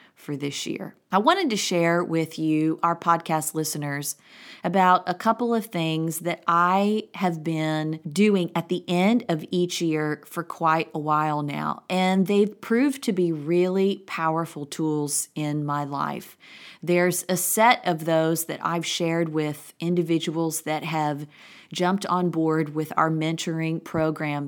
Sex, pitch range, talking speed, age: female, 155-175 Hz, 155 wpm, 30-49